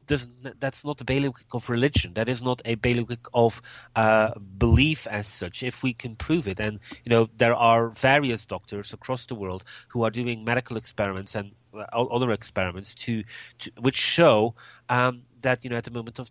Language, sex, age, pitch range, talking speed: English, male, 30-49, 110-130 Hz, 195 wpm